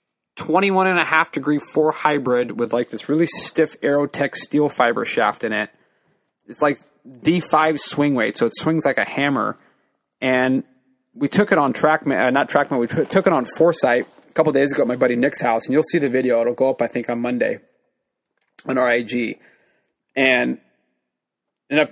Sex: male